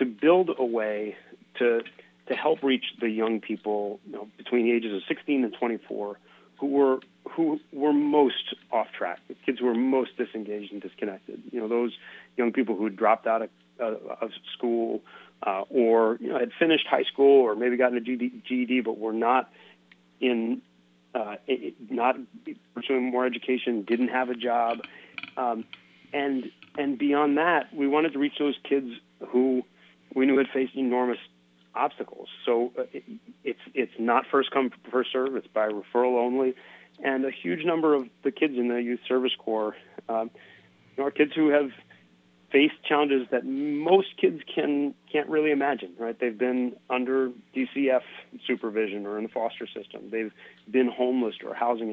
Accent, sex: American, male